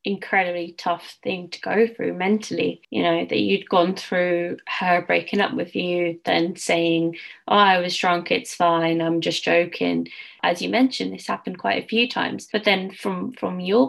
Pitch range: 175-215 Hz